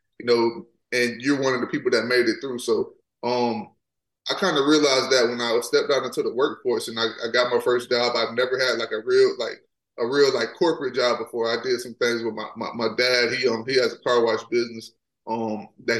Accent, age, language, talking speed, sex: American, 20-39, English, 245 wpm, male